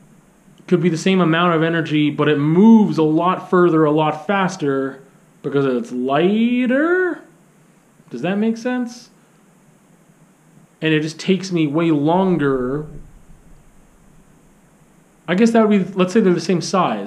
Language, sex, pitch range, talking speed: English, male, 140-180 Hz, 145 wpm